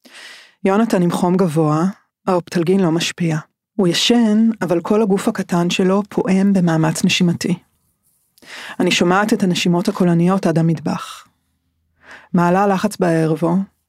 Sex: female